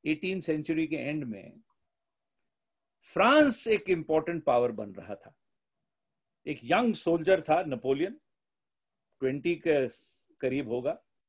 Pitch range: 140-205 Hz